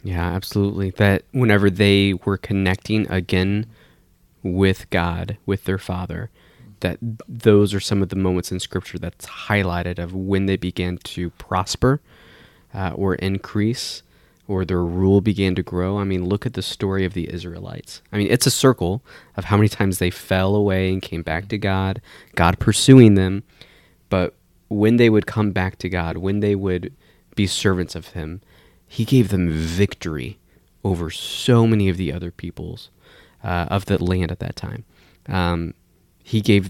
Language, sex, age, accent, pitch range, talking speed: English, male, 20-39, American, 90-105 Hz, 170 wpm